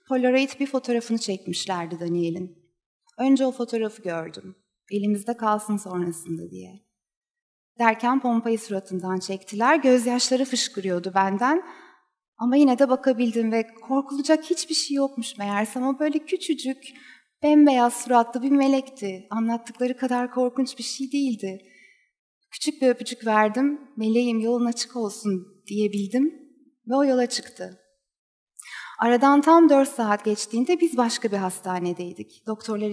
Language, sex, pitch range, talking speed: Turkish, female, 205-270 Hz, 120 wpm